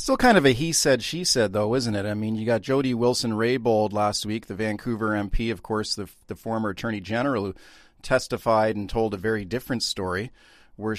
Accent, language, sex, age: American, English, male, 40-59